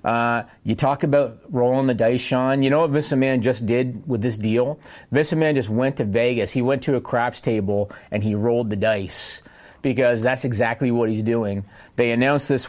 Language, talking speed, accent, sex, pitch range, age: English, 210 wpm, American, male, 115-135 Hz, 30-49